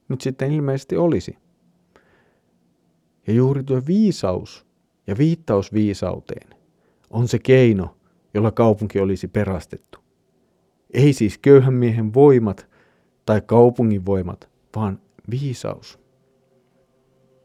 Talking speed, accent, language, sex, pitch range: 95 wpm, native, Finnish, male, 105-135 Hz